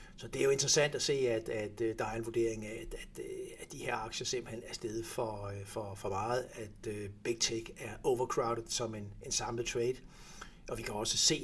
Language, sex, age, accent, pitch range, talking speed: Danish, male, 60-79, native, 110-130 Hz, 215 wpm